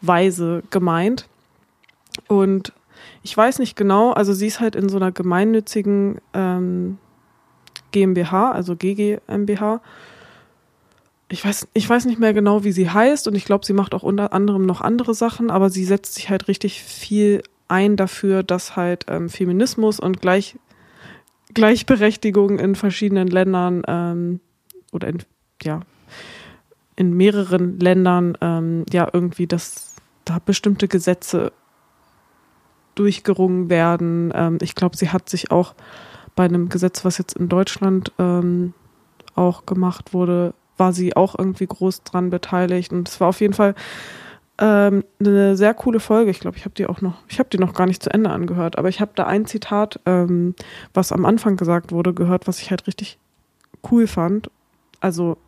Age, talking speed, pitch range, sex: 20-39, 155 wpm, 180-205 Hz, female